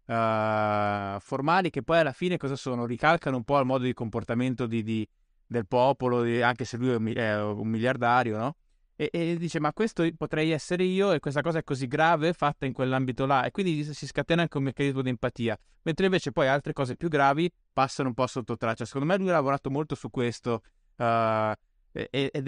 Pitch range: 110-140 Hz